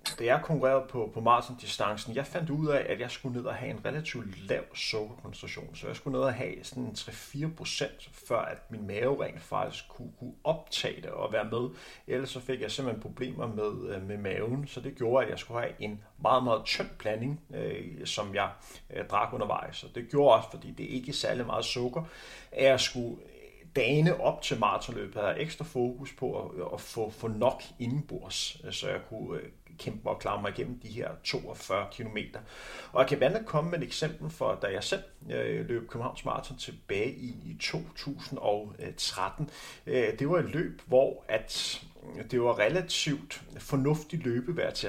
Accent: native